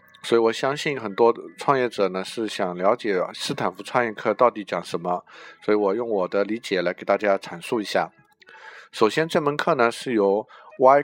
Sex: male